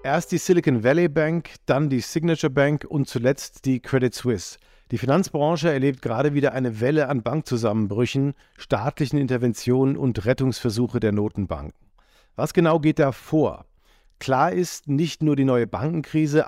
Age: 50-69